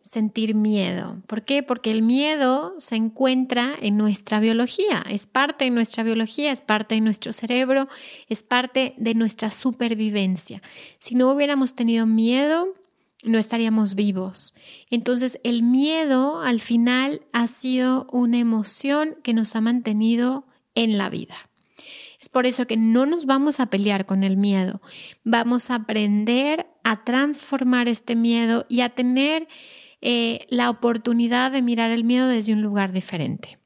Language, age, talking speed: Spanish, 30-49, 150 wpm